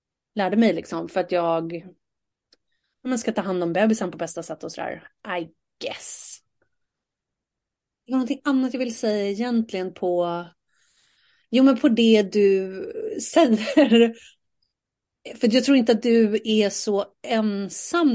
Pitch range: 185-240 Hz